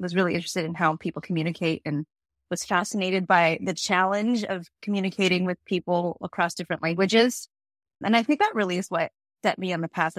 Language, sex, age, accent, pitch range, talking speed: English, female, 30-49, American, 170-215 Hz, 190 wpm